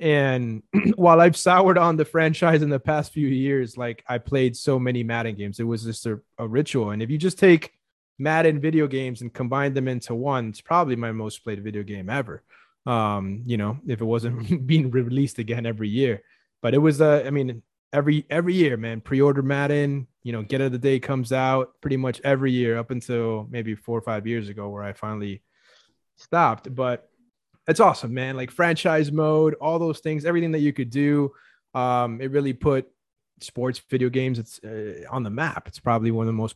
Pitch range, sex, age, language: 115-150 Hz, male, 20-39, English